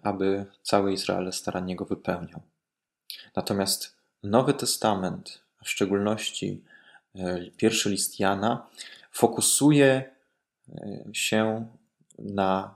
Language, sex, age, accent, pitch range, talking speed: Polish, male, 20-39, native, 95-115 Hz, 85 wpm